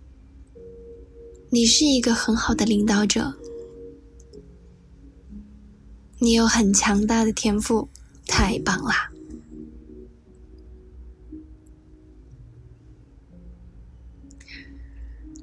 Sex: female